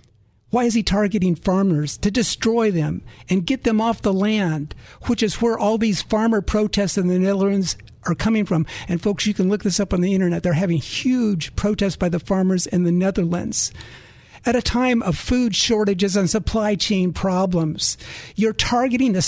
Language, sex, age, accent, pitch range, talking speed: English, male, 50-69, American, 175-235 Hz, 185 wpm